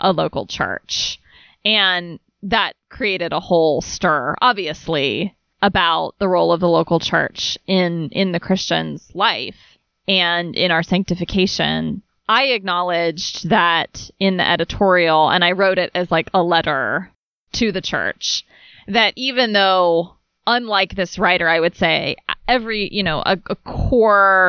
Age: 20-39